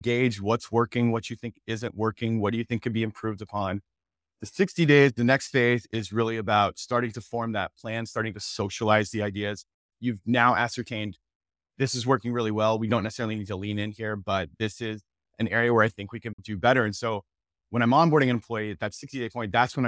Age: 30-49